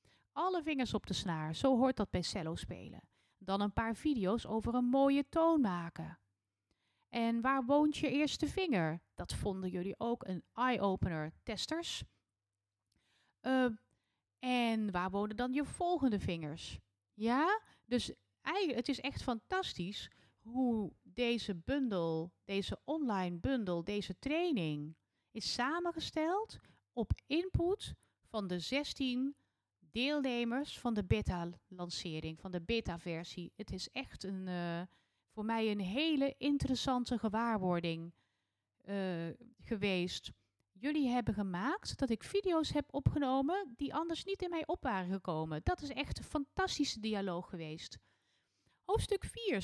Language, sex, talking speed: Dutch, female, 130 wpm